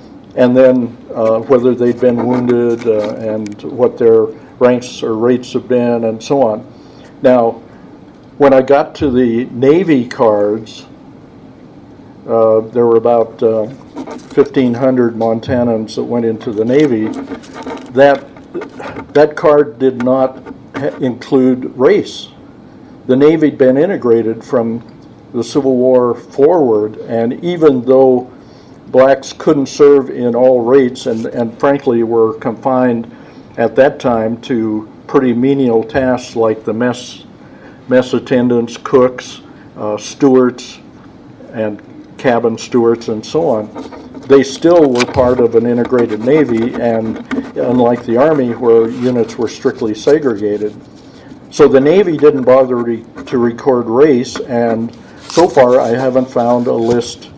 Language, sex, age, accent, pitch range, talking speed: English, male, 60-79, American, 115-130 Hz, 130 wpm